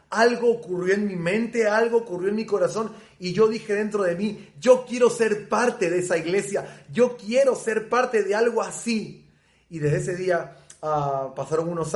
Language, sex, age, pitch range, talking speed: Spanish, male, 30-49, 180-220 Hz, 185 wpm